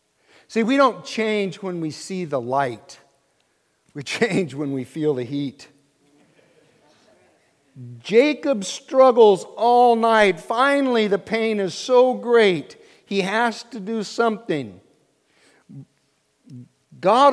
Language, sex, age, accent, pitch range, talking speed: English, male, 50-69, American, 140-215 Hz, 110 wpm